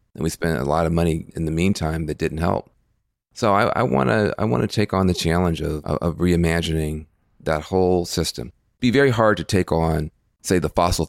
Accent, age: American, 40-59